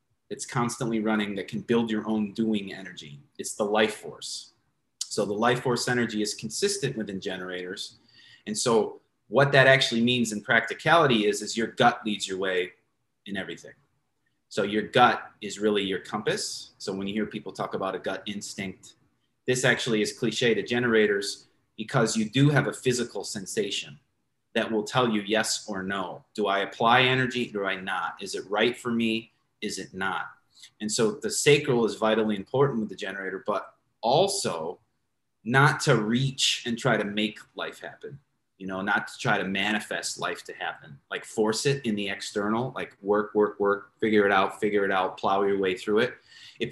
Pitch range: 100-120 Hz